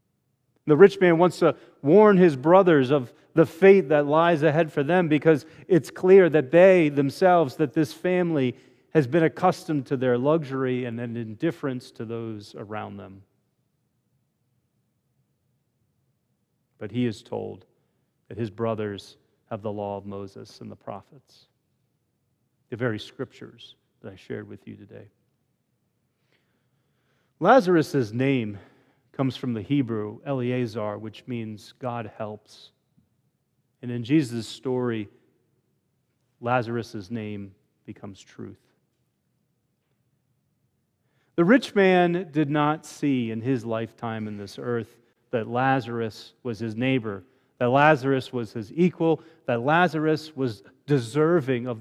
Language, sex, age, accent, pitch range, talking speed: English, male, 30-49, American, 115-155 Hz, 125 wpm